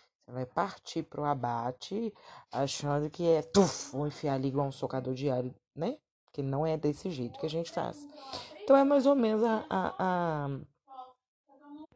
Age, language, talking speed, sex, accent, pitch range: 20-39, Portuguese, 170 wpm, female, Brazilian, 135-185 Hz